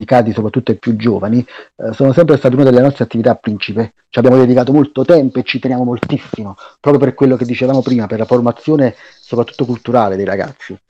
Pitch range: 105-125 Hz